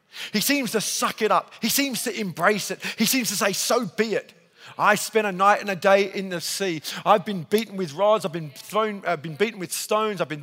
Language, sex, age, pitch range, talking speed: English, male, 40-59, 185-225 Hz, 245 wpm